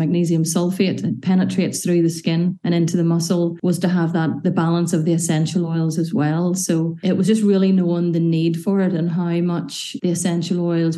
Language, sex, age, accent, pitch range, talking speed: English, female, 30-49, Irish, 165-185 Hz, 215 wpm